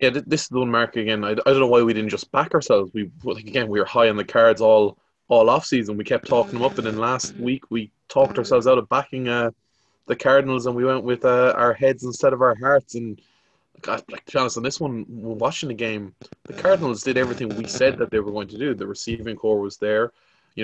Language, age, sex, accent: English, 20-39, male, Irish